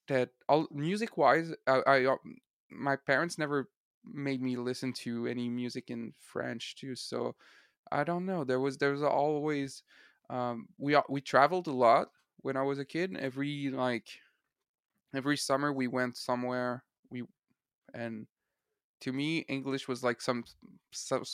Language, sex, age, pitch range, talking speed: English, male, 20-39, 125-140 Hz, 150 wpm